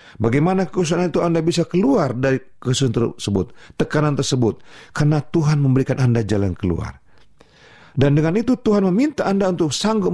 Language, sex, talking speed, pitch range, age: Indonesian, male, 150 wpm, 105-155 Hz, 40-59